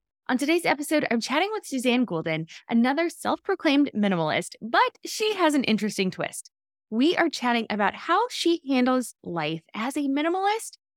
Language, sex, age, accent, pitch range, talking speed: English, female, 20-39, American, 190-290 Hz, 155 wpm